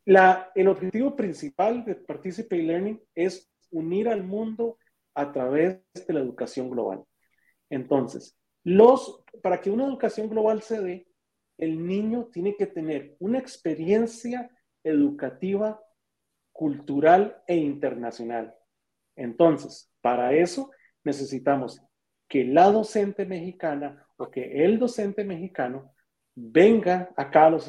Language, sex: Spanish, male